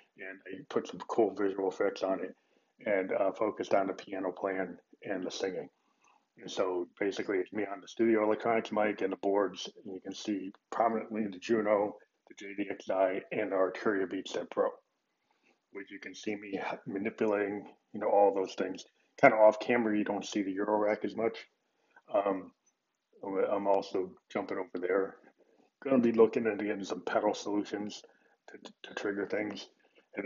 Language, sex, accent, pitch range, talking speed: English, male, American, 100-115 Hz, 180 wpm